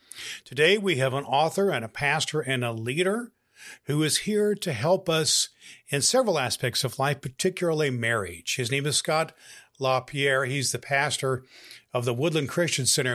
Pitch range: 125-160 Hz